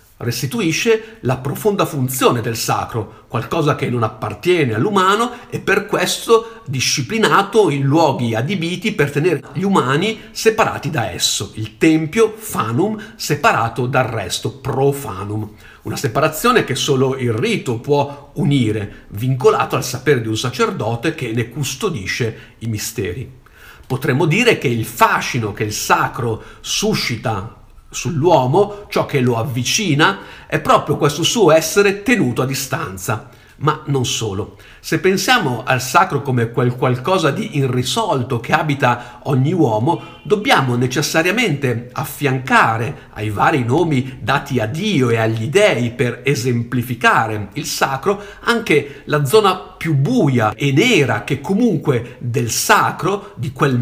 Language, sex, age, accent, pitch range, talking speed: Italian, male, 50-69, native, 115-155 Hz, 130 wpm